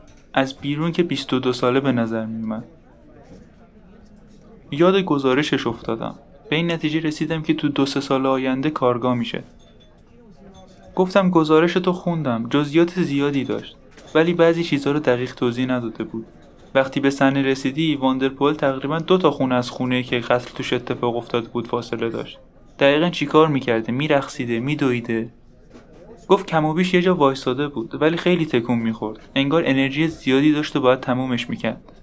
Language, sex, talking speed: Persian, male, 155 wpm